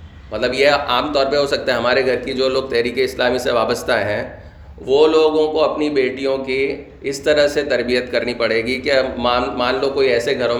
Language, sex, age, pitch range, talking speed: Urdu, male, 30-49, 115-155 Hz, 215 wpm